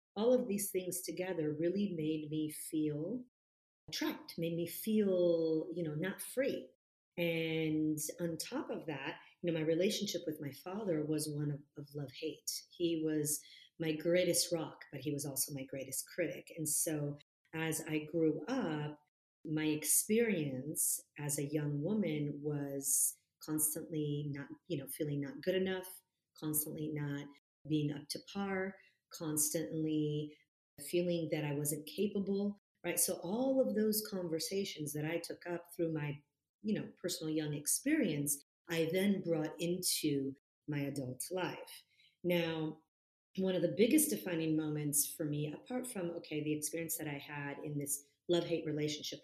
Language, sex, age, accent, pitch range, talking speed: English, female, 40-59, American, 150-175 Hz, 150 wpm